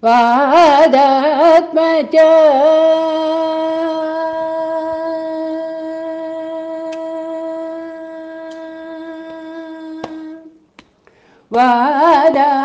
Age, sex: 50-69, female